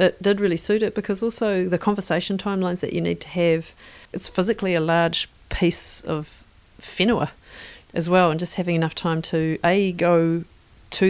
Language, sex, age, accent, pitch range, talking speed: English, female, 40-59, Australian, 155-175 Hz, 180 wpm